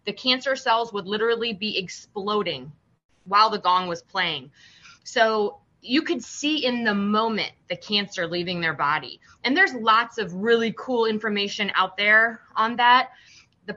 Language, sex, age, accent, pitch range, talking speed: English, female, 20-39, American, 190-245 Hz, 155 wpm